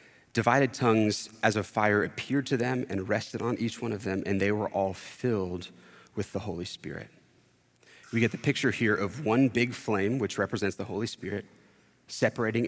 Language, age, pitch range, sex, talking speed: English, 30-49, 100-120 Hz, male, 185 wpm